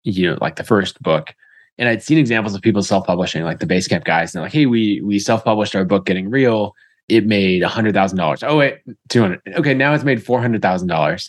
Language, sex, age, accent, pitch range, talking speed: English, male, 20-39, American, 100-120 Hz, 245 wpm